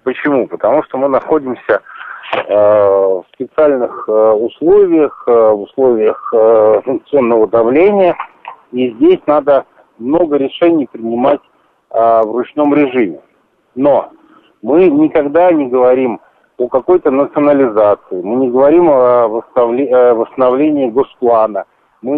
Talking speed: 110 wpm